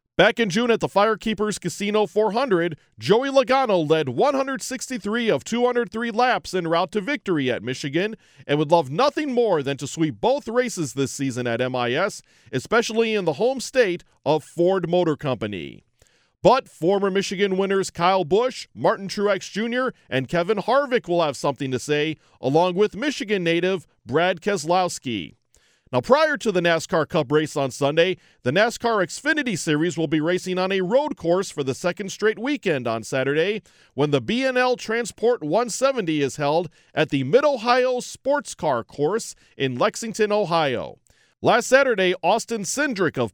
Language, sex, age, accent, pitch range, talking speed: English, male, 40-59, American, 160-235 Hz, 160 wpm